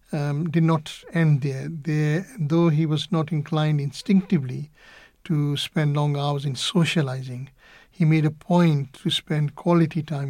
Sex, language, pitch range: male, English, 145-165 Hz